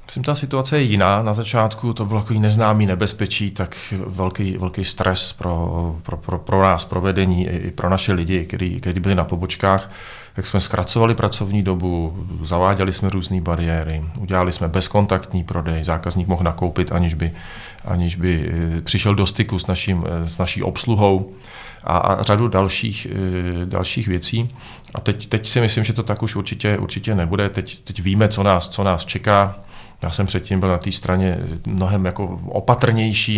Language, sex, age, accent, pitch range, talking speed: Czech, male, 40-59, native, 90-105 Hz, 175 wpm